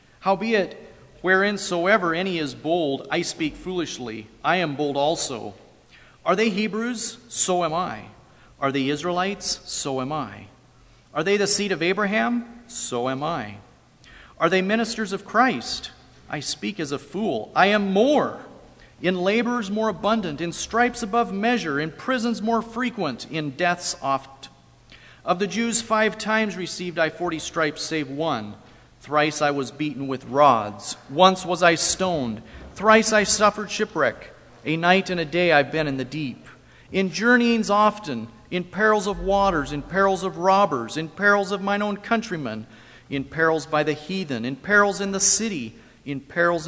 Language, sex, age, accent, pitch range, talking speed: English, male, 40-59, American, 150-215 Hz, 160 wpm